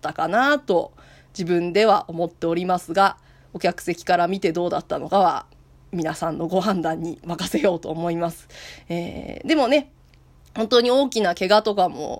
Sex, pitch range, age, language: female, 180-245 Hz, 20-39, Japanese